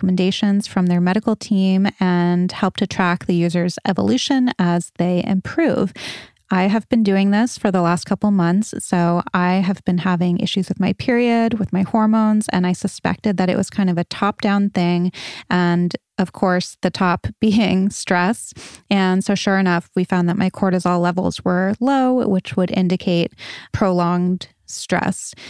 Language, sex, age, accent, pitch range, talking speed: English, female, 20-39, American, 180-210 Hz, 170 wpm